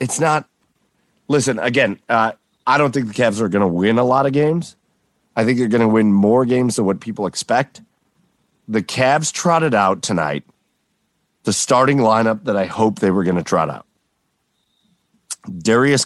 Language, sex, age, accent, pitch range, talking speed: English, male, 40-59, American, 105-145 Hz, 180 wpm